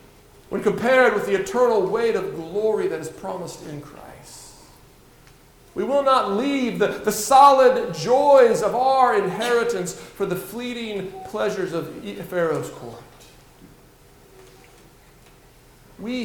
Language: English